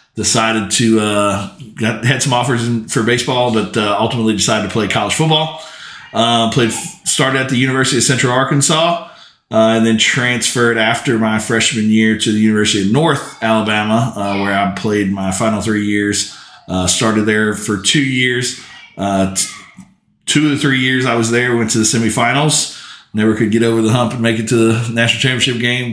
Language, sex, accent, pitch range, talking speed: English, male, American, 105-120 Hz, 190 wpm